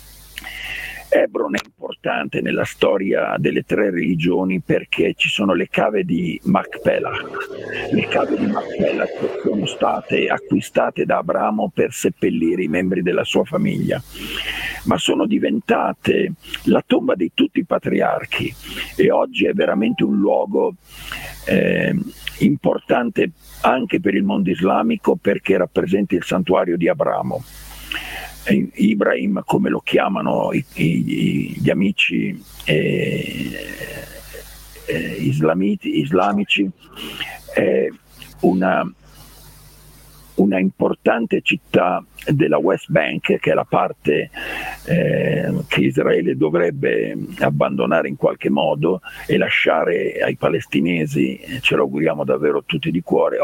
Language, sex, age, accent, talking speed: Italian, male, 50-69, native, 110 wpm